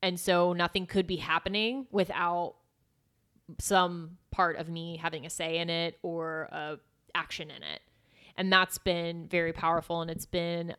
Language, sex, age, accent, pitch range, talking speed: English, female, 20-39, American, 165-185 Hz, 160 wpm